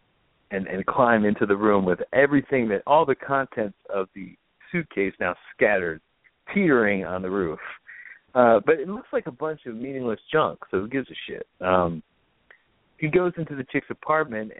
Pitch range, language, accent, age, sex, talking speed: 100-140 Hz, English, American, 50-69, male, 175 wpm